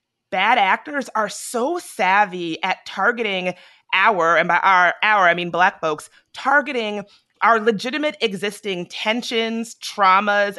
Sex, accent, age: female, American, 30-49